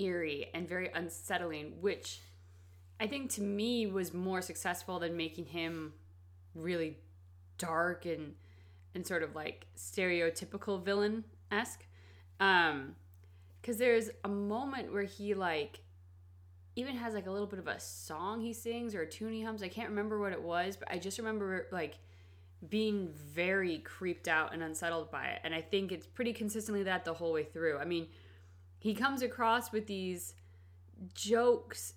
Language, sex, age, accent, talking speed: English, female, 20-39, American, 160 wpm